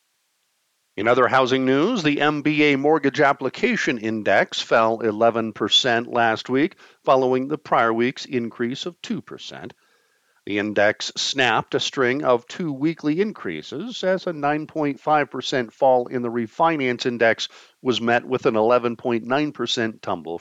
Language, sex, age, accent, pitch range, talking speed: English, male, 50-69, American, 115-150 Hz, 125 wpm